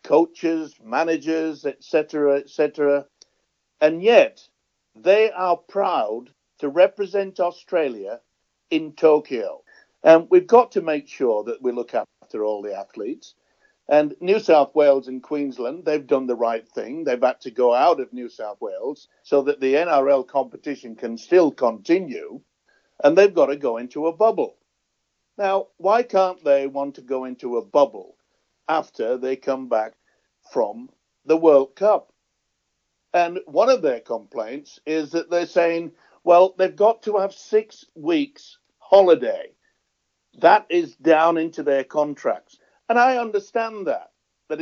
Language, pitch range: English, 140-205 Hz